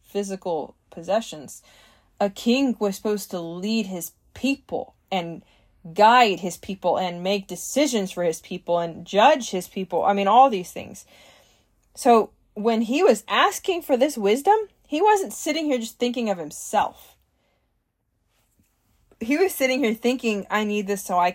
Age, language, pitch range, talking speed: 20-39, English, 195-265 Hz, 155 wpm